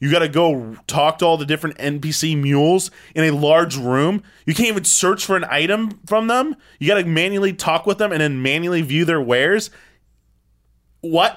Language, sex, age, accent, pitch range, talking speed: English, male, 20-39, American, 145-190 Hz, 200 wpm